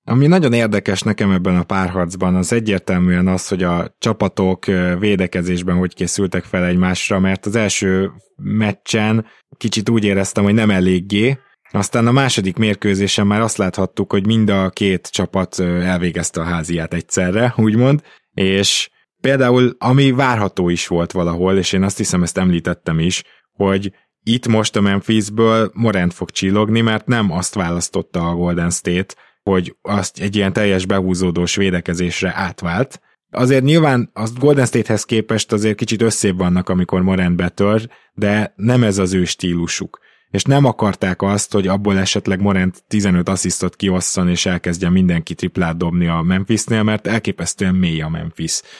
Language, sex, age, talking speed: Hungarian, male, 20-39, 150 wpm